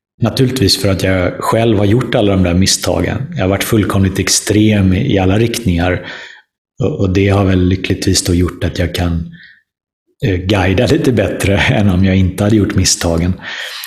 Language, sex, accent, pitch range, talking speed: Swedish, male, native, 95-115 Hz, 170 wpm